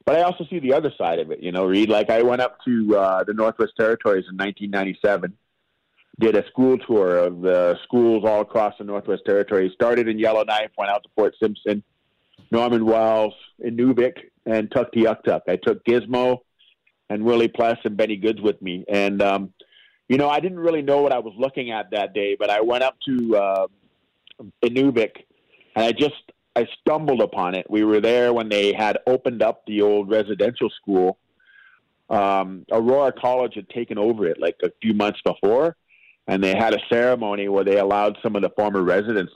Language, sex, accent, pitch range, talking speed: English, male, American, 100-125 Hz, 195 wpm